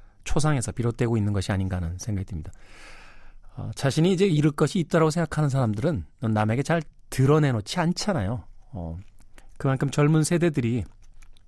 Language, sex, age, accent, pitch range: Korean, male, 40-59, native, 105-150 Hz